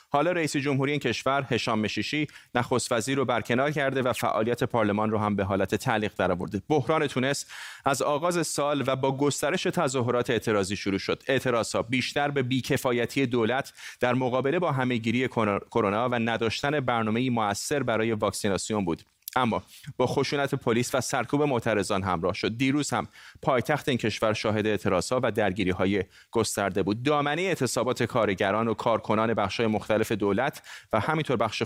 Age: 30-49